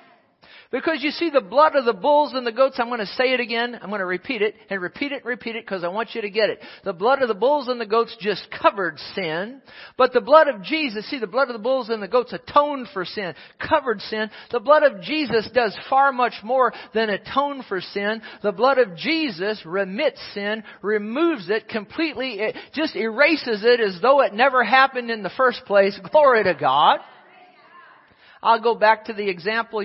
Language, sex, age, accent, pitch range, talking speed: English, male, 50-69, American, 200-260 Hz, 215 wpm